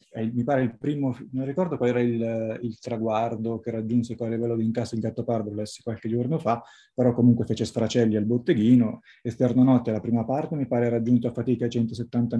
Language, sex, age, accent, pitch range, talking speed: Italian, male, 20-39, native, 115-130 Hz, 215 wpm